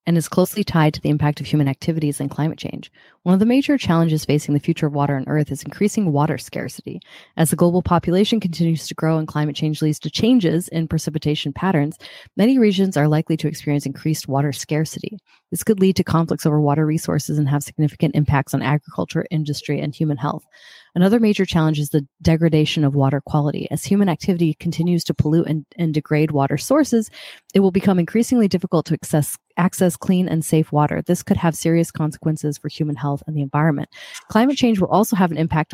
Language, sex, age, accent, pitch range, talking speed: English, female, 30-49, American, 150-180 Hz, 205 wpm